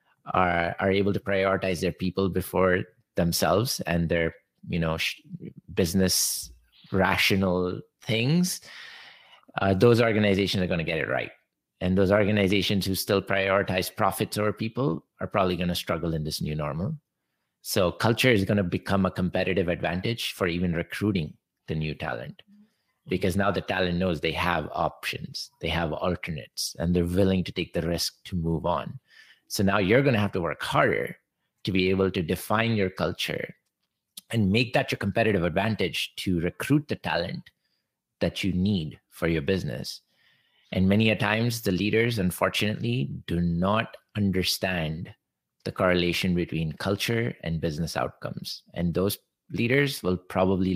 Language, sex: English, male